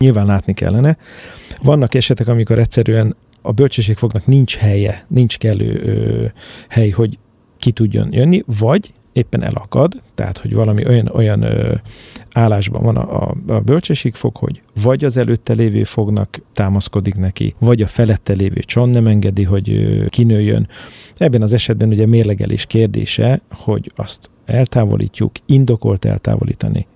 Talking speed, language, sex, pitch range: 140 wpm, Hungarian, male, 105-125 Hz